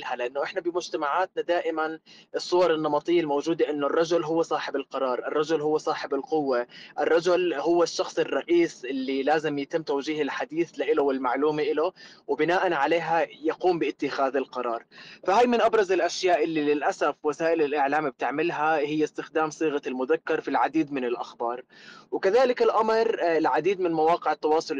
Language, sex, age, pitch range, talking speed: Arabic, male, 20-39, 150-180 Hz, 135 wpm